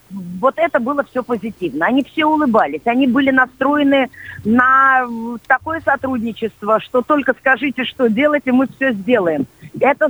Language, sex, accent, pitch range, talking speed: Russian, female, native, 210-270 Hz, 145 wpm